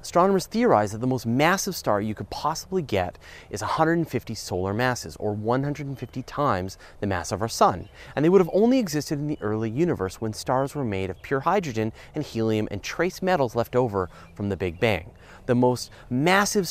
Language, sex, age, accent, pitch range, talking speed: English, male, 30-49, American, 95-150 Hz, 195 wpm